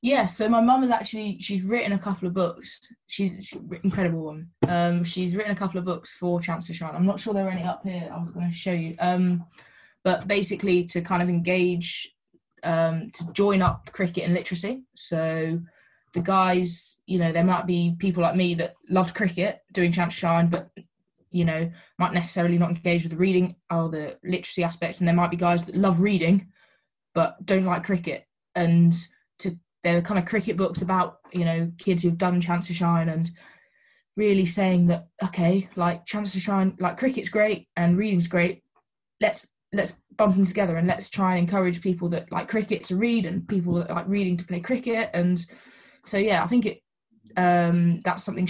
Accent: British